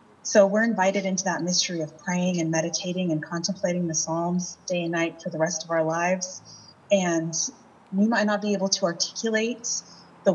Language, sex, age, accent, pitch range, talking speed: English, female, 30-49, American, 175-205 Hz, 185 wpm